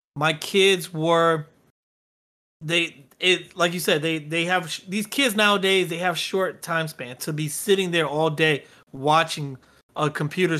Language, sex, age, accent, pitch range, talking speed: English, male, 30-49, American, 150-180 Hz, 160 wpm